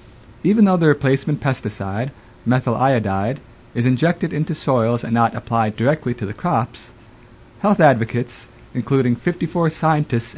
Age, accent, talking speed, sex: 30-49, American, 135 wpm, male